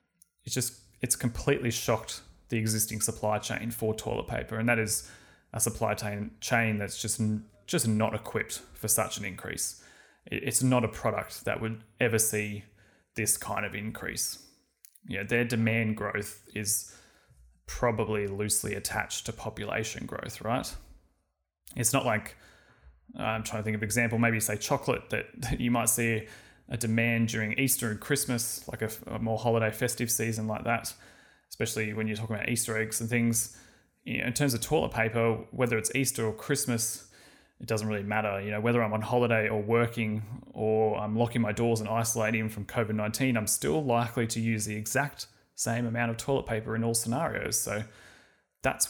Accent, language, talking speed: Australian, English, 175 wpm